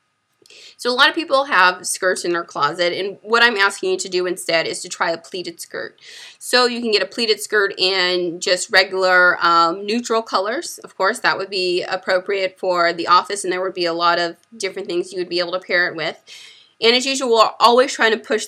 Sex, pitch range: female, 180-225 Hz